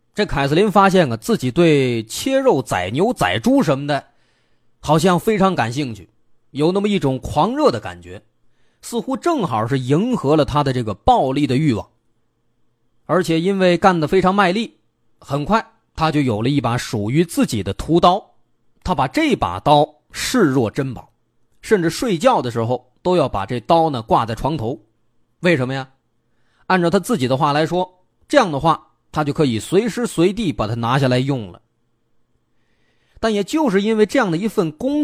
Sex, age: male, 30-49